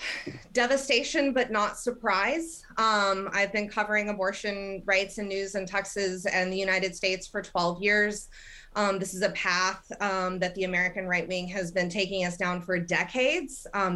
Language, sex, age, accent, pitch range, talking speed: English, female, 20-39, American, 185-210 Hz, 170 wpm